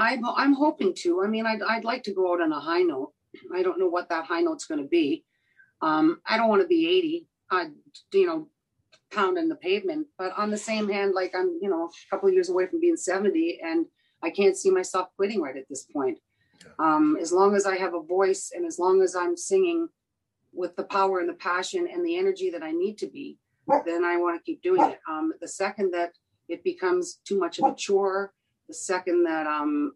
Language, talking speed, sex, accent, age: English, 225 wpm, female, American, 40-59